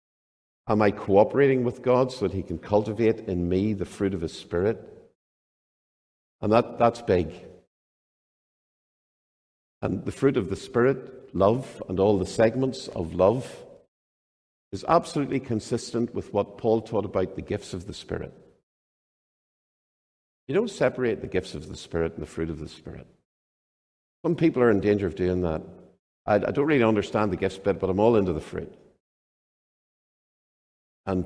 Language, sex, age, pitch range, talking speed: English, male, 50-69, 95-120 Hz, 160 wpm